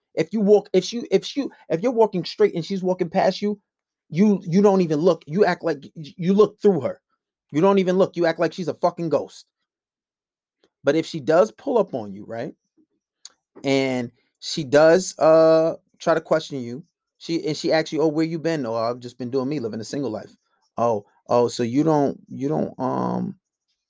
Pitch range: 150-195 Hz